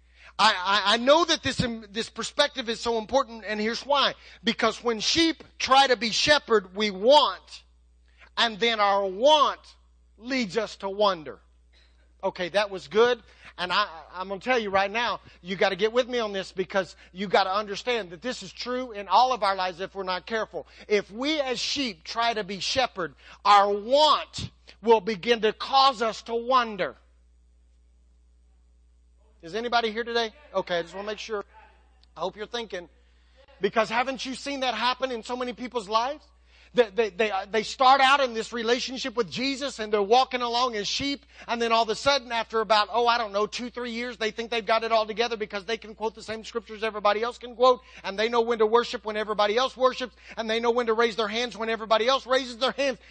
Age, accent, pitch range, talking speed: 40-59, American, 200-245 Hz, 205 wpm